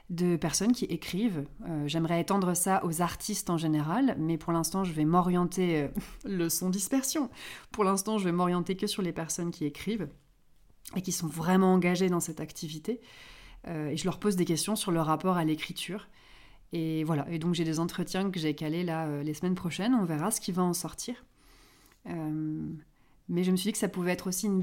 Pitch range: 165-195 Hz